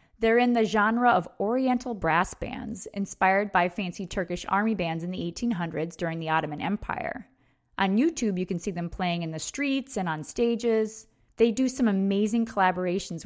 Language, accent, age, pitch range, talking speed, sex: English, American, 20-39, 180-230 Hz, 175 wpm, female